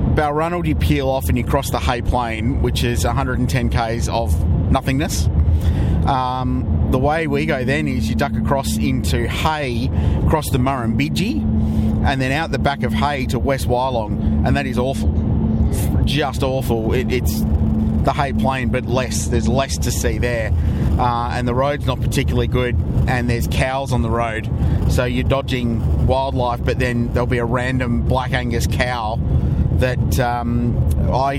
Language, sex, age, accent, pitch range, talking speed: English, male, 30-49, Australian, 80-130 Hz, 165 wpm